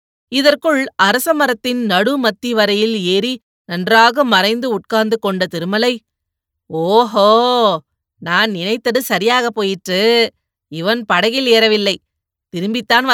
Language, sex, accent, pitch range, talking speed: Tamil, female, native, 185-255 Hz, 85 wpm